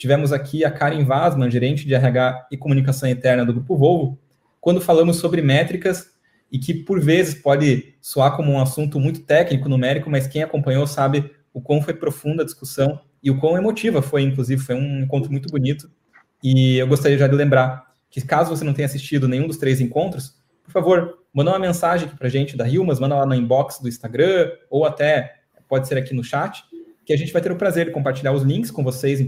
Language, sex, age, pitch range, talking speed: Portuguese, male, 20-39, 130-155 Hz, 215 wpm